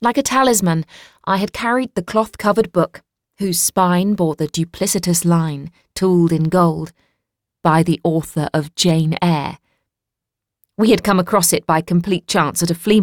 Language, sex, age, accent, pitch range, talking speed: English, female, 30-49, British, 150-185 Hz, 160 wpm